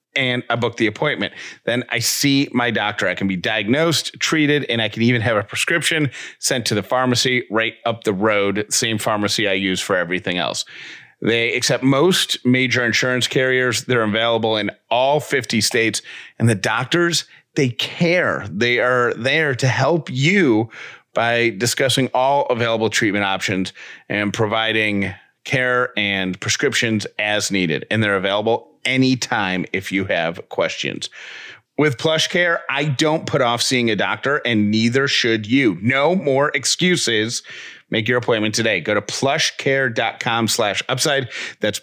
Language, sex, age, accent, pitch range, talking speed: English, male, 30-49, American, 105-135 Hz, 155 wpm